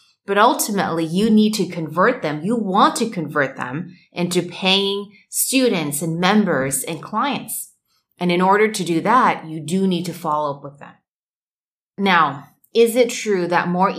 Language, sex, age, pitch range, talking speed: English, female, 30-49, 155-195 Hz, 165 wpm